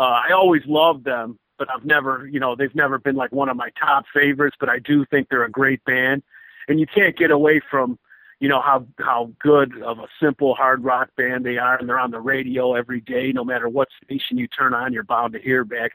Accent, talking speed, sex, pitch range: American, 245 wpm, male, 125-145 Hz